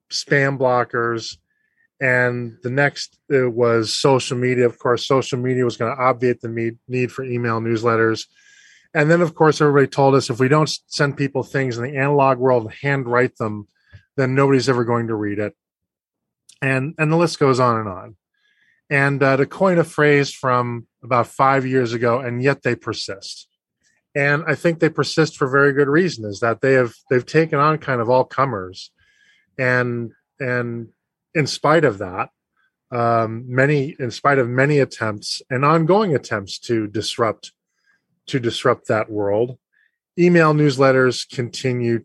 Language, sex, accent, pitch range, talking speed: English, male, American, 120-145 Hz, 165 wpm